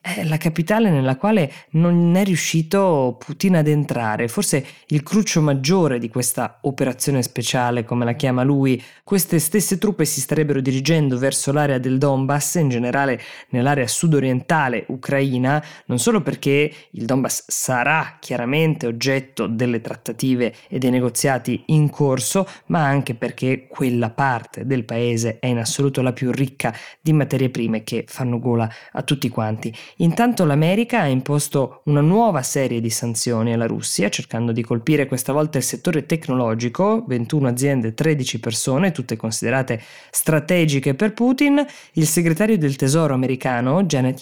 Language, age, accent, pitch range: Italian, 20-39, native, 125-165 Hz